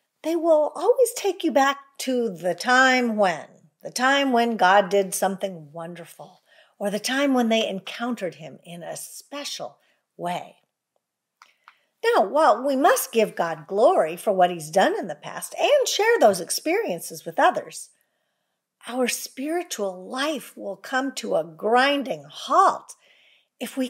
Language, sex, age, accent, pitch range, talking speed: English, female, 50-69, American, 195-285 Hz, 150 wpm